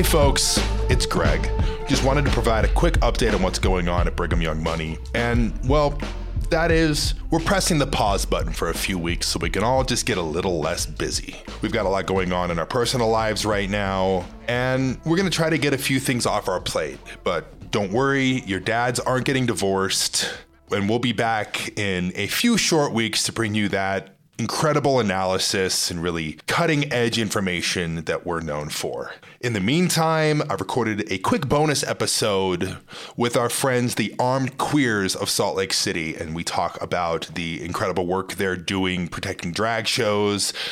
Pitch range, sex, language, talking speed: 95-130 Hz, male, English, 190 wpm